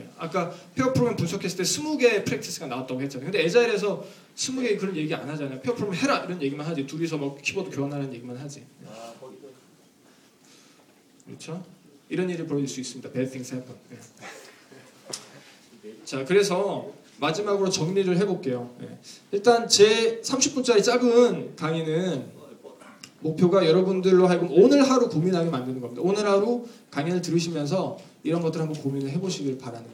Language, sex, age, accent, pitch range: Korean, male, 20-39, native, 140-210 Hz